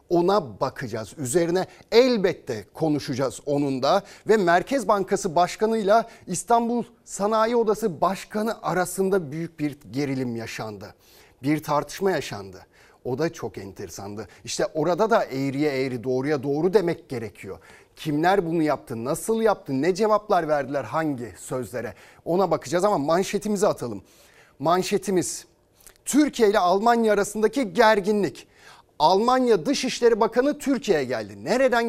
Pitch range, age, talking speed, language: 150-235 Hz, 40-59, 120 wpm, Turkish